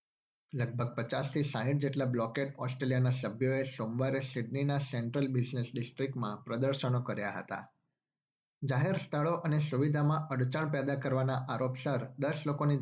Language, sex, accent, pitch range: Gujarati, male, native, 120-140 Hz